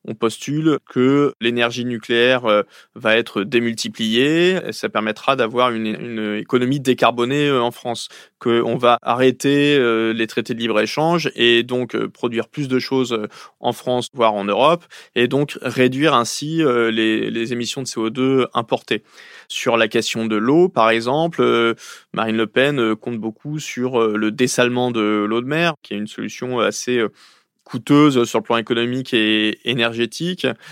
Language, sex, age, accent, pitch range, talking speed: French, male, 20-39, French, 115-135 Hz, 150 wpm